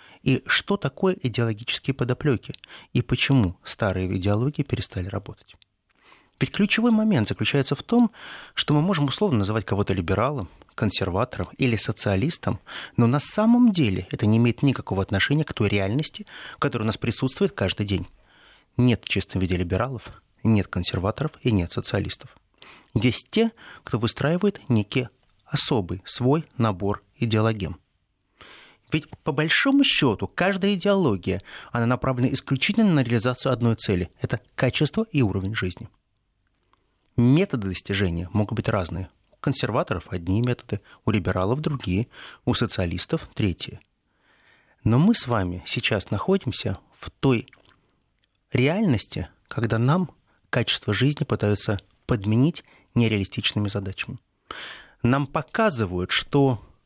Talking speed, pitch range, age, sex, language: 120 wpm, 100-140 Hz, 30-49, male, Russian